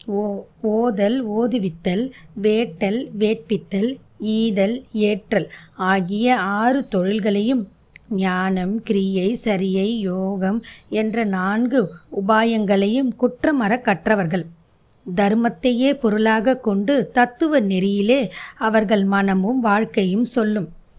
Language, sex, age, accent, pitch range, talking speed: Tamil, female, 20-39, native, 195-245 Hz, 85 wpm